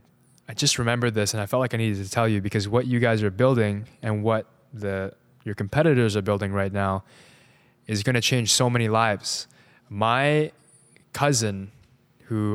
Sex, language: male, English